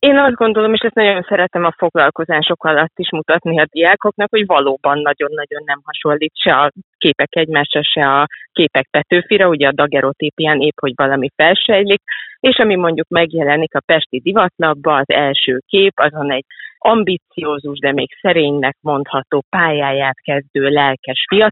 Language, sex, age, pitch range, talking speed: Hungarian, female, 30-49, 140-170 Hz, 150 wpm